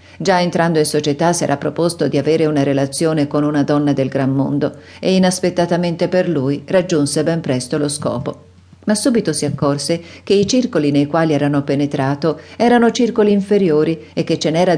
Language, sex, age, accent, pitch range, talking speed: Italian, female, 50-69, native, 145-185 Hz, 180 wpm